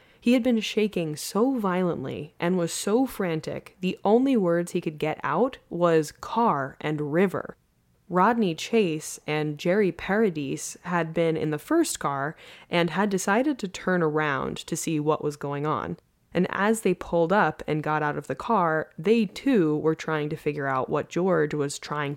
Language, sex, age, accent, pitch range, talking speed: English, female, 20-39, American, 155-210 Hz, 180 wpm